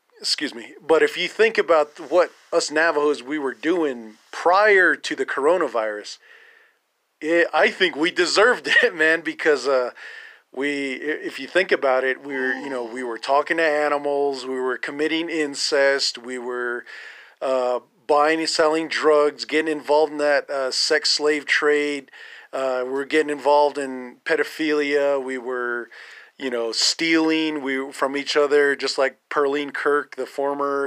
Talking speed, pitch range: 160 wpm, 135-160 Hz